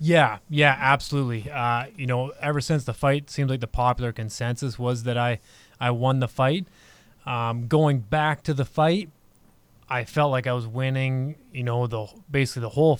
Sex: male